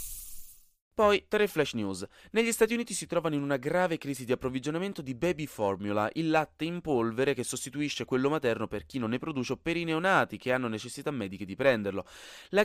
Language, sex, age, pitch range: Italian, male, 20-39, 115-160 Hz